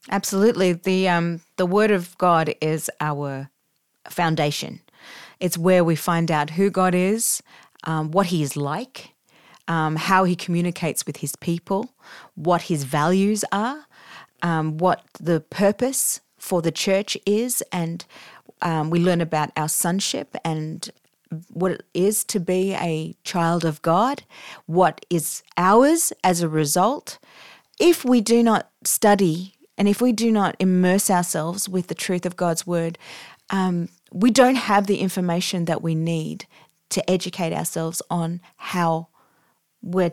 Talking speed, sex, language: 145 wpm, female, English